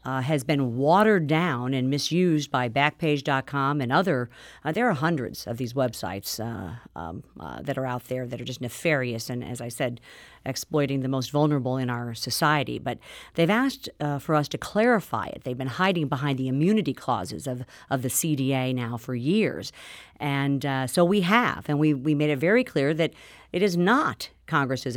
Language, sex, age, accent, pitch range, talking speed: English, female, 50-69, American, 130-160 Hz, 190 wpm